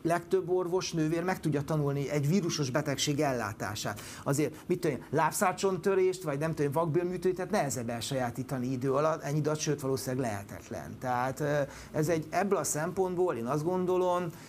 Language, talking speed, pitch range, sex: Hungarian, 160 wpm, 135-175 Hz, male